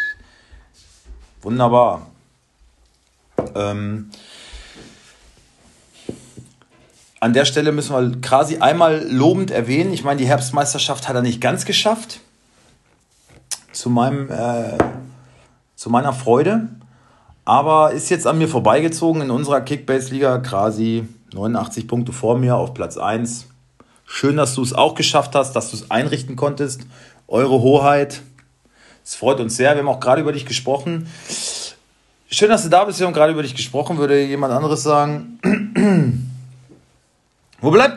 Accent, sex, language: German, male, German